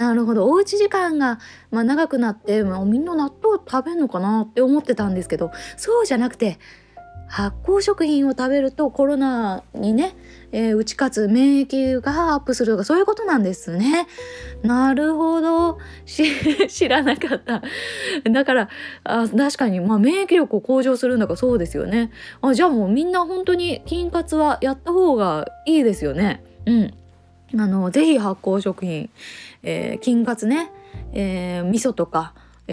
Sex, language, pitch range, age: female, Japanese, 185-280 Hz, 20-39